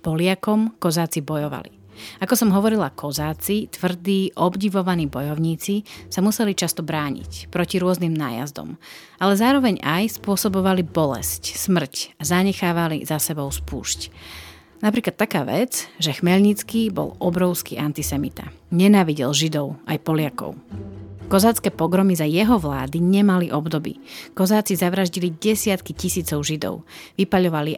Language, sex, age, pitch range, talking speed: Slovak, female, 30-49, 150-195 Hz, 115 wpm